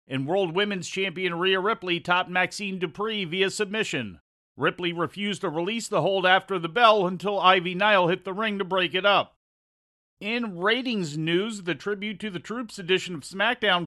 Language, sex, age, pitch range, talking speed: English, male, 40-59, 165-200 Hz, 175 wpm